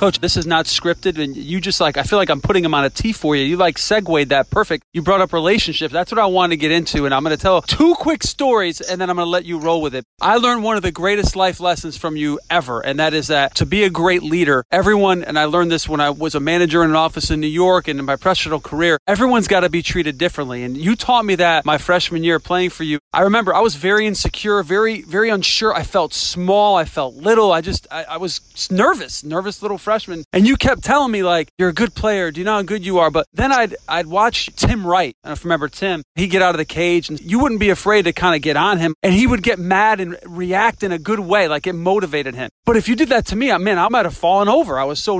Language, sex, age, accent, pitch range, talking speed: English, male, 30-49, American, 160-210 Hz, 285 wpm